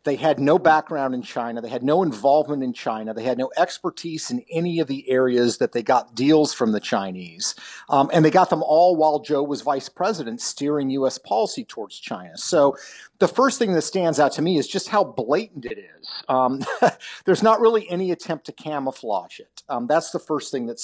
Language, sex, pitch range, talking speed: English, male, 125-160 Hz, 215 wpm